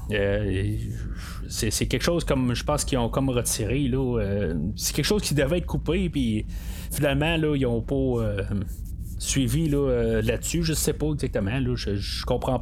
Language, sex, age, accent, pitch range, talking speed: French, male, 30-49, Canadian, 105-150 Hz, 195 wpm